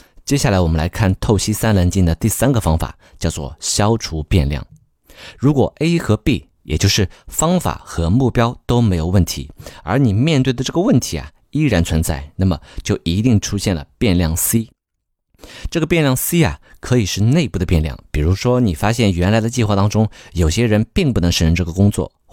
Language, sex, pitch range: Chinese, male, 85-115 Hz